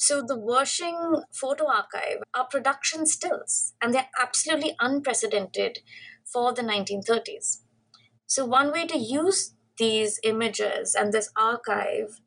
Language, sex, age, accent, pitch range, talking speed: English, female, 20-39, Indian, 210-250 Hz, 120 wpm